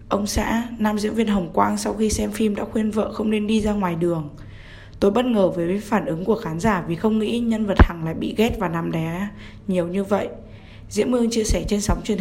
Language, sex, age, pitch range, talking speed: Vietnamese, female, 10-29, 165-215 Hz, 250 wpm